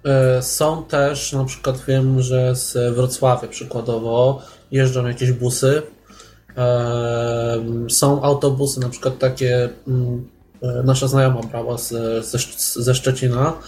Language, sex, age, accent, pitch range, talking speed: Polish, male, 20-39, native, 125-155 Hz, 95 wpm